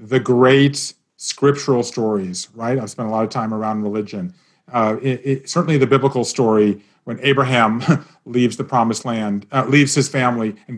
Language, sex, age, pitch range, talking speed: English, male, 40-59, 115-150 Hz, 160 wpm